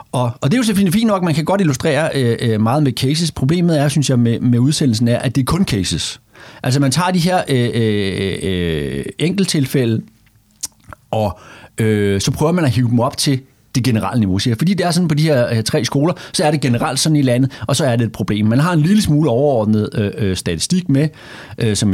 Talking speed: 240 wpm